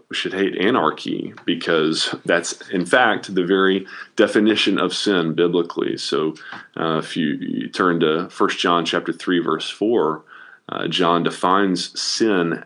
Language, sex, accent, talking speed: English, male, American, 145 wpm